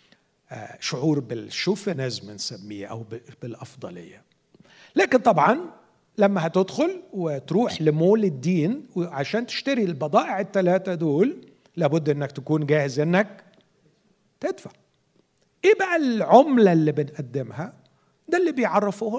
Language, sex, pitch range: Arabic, male, 155-205 Hz